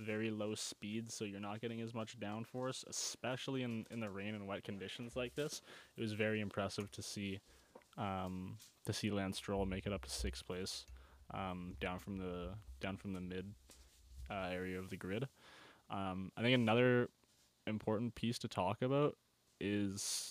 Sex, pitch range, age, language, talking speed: male, 95-110 Hz, 20-39, English, 175 wpm